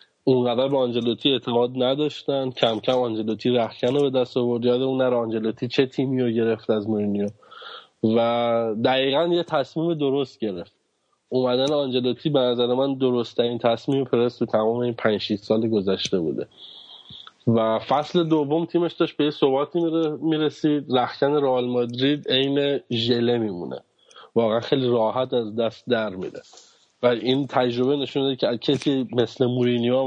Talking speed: 150 wpm